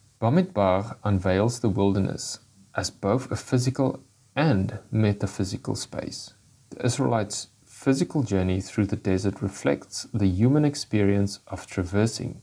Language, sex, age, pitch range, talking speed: English, male, 40-59, 100-130 Hz, 120 wpm